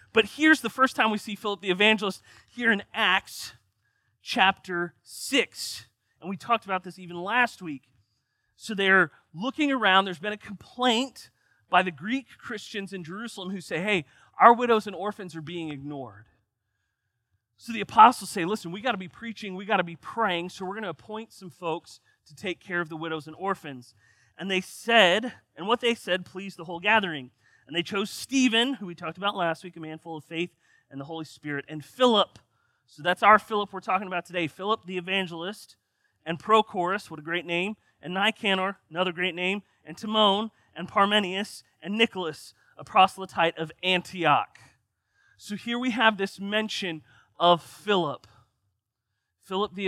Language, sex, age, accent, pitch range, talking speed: English, male, 30-49, American, 160-205 Hz, 180 wpm